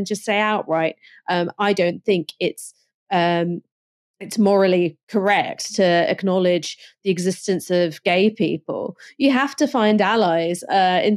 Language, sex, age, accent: English, female, 30-49, British